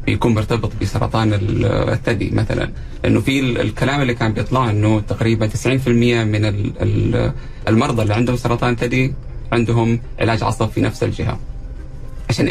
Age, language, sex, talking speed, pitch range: 30-49, Arabic, male, 130 wpm, 110-130 Hz